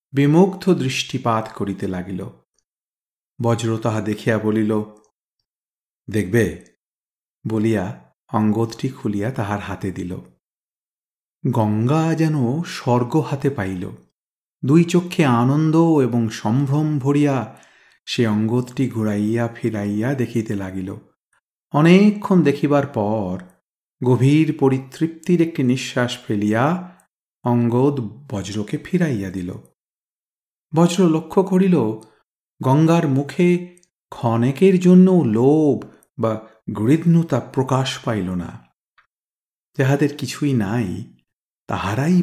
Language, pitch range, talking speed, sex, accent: Bengali, 110-145 Hz, 80 wpm, male, native